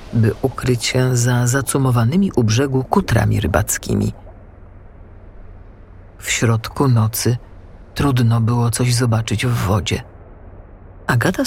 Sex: female